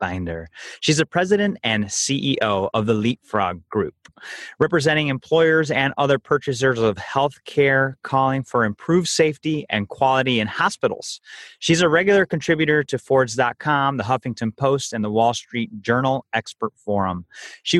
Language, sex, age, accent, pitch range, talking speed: English, male, 30-49, American, 110-140 Hz, 140 wpm